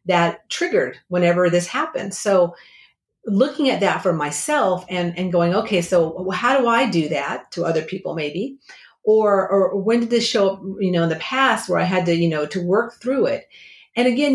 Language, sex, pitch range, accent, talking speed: English, female, 170-210 Hz, American, 205 wpm